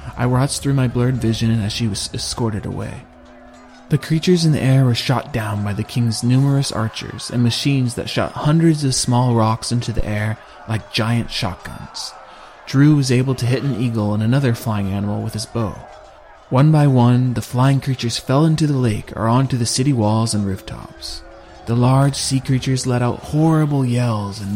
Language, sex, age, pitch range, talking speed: English, male, 30-49, 110-140 Hz, 190 wpm